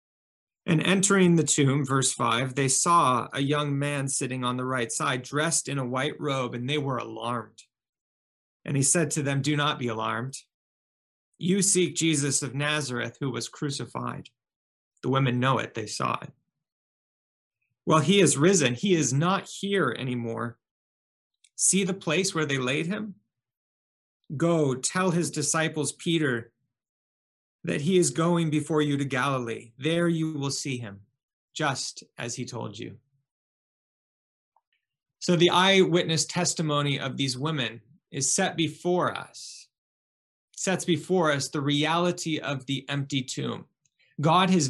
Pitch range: 120-165 Hz